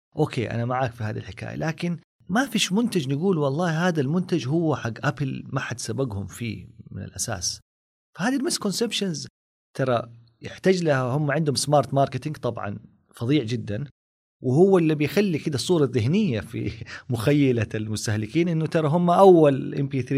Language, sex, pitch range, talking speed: Arabic, male, 110-150 Hz, 150 wpm